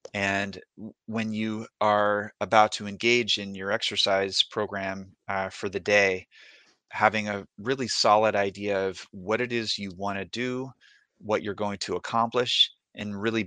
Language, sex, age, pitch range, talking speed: English, male, 30-49, 100-110 Hz, 155 wpm